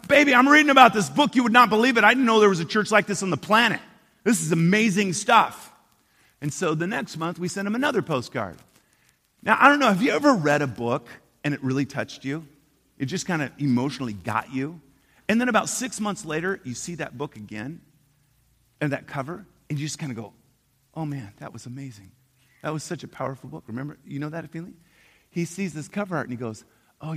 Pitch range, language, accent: 125-185 Hz, English, American